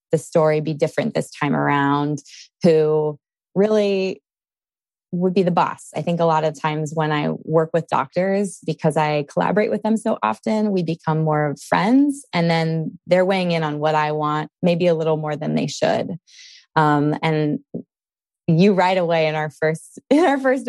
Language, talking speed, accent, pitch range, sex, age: English, 175 wpm, American, 155-185 Hz, female, 20-39